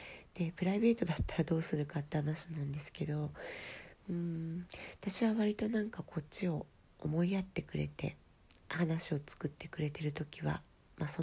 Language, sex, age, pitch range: Japanese, female, 40-59, 145-180 Hz